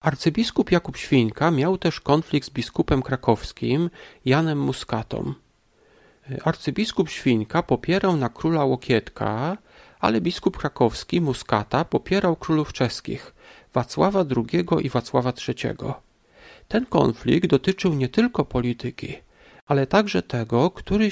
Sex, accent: male, native